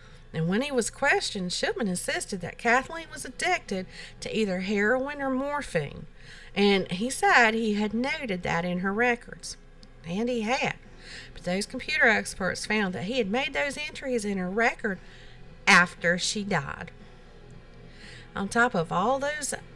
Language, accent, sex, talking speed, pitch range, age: English, American, female, 155 wpm, 170-235 Hz, 50-69